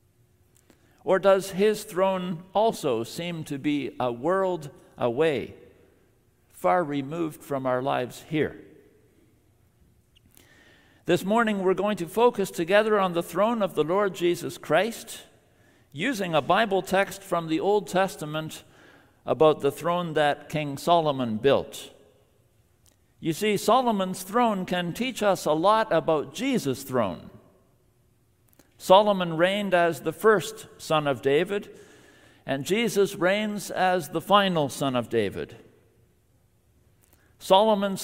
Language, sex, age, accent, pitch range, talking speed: English, male, 50-69, American, 140-195 Hz, 120 wpm